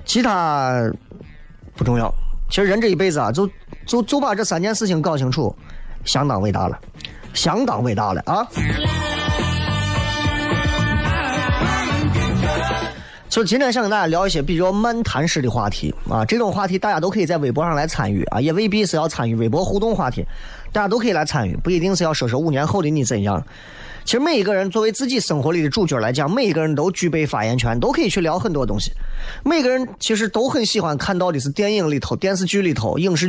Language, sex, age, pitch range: Chinese, male, 30-49, 130-195 Hz